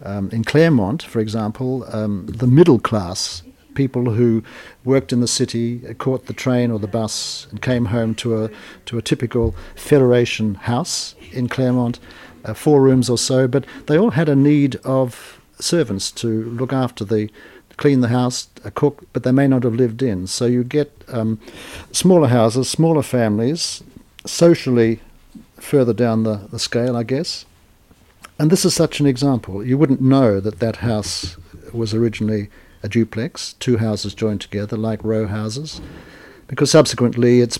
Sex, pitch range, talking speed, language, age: male, 110-130 Hz, 165 wpm, English, 50-69